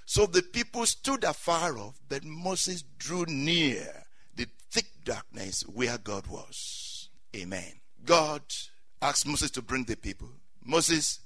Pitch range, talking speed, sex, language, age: 150-225 Hz, 135 wpm, male, English, 60-79